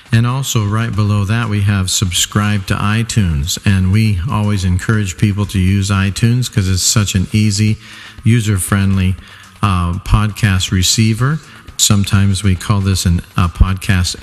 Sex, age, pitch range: male, 50-69, 95-110 Hz